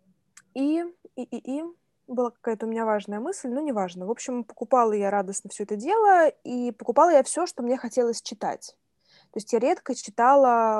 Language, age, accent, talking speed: Russian, 20-39, native, 190 wpm